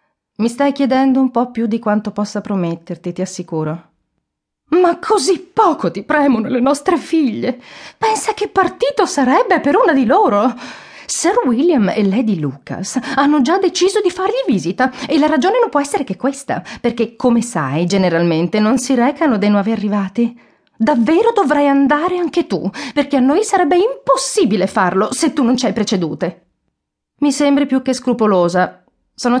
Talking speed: 165 wpm